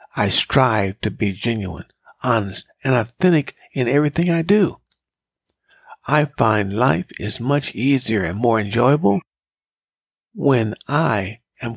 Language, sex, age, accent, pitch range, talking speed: English, male, 50-69, American, 110-140 Hz, 120 wpm